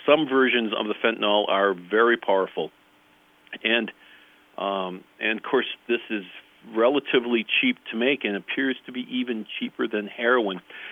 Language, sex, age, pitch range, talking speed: English, male, 40-59, 105-130 Hz, 150 wpm